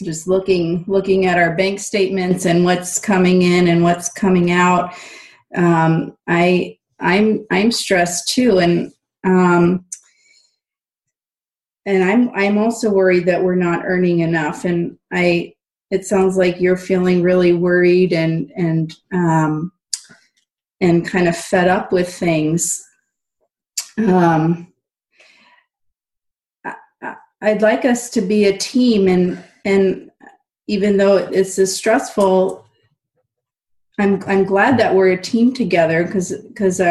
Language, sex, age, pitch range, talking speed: English, female, 30-49, 175-215 Hz, 125 wpm